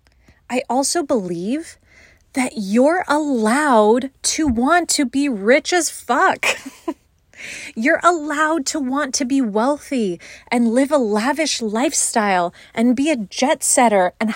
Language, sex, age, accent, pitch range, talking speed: English, female, 30-49, American, 190-255 Hz, 130 wpm